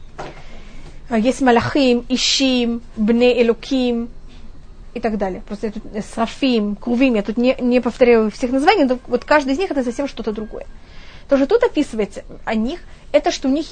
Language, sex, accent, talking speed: Russian, female, native, 155 wpm